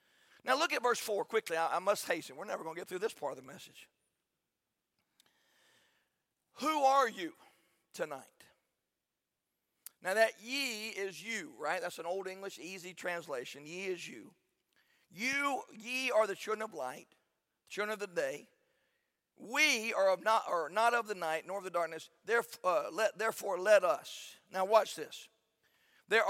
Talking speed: 170 wpm